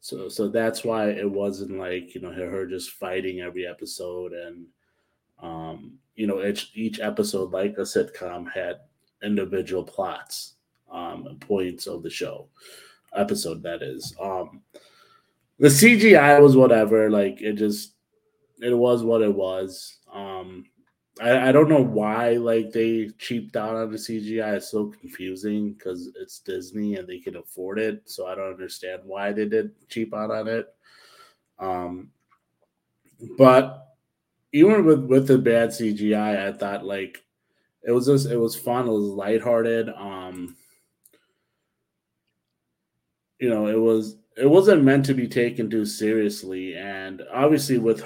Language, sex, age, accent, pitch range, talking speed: English, male, 20-39, American, 95-115 Hz, 150 wpm